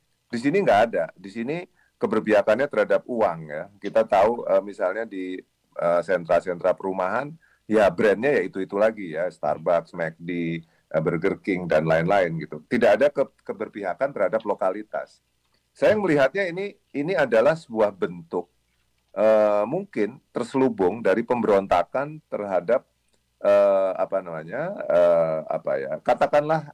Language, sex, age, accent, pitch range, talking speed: Indonesian, male, 40-59, native, 95-140 Hz, 130 wpm